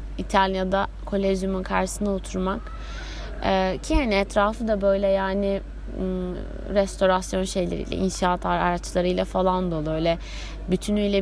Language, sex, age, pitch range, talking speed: Turkish, female, 30-49, 175-195 Hz, 100 wpm